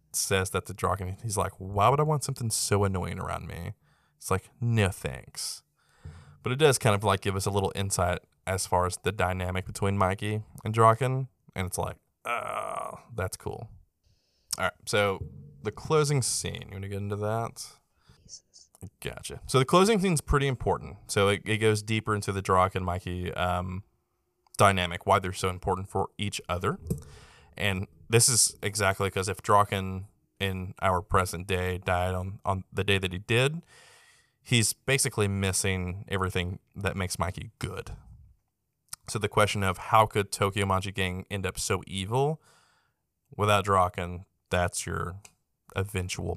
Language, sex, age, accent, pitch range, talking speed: English, male, 20-39, American, 95-110 Hz, 165 wpm